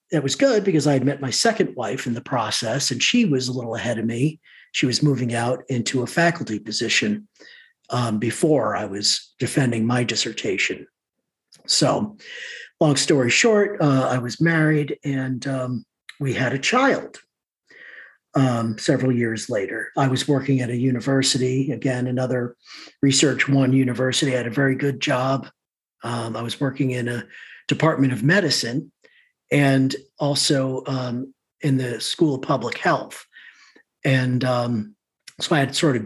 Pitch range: 125-150 Hz